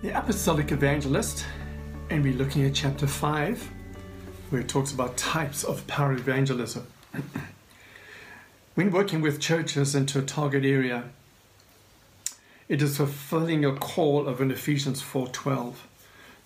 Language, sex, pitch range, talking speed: English, male, 130-150 Hz, 125 wpm